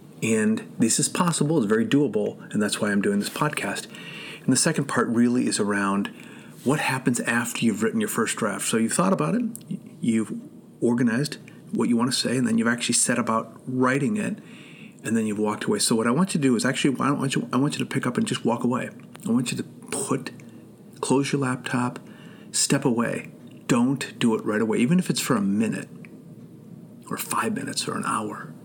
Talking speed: 220 wpm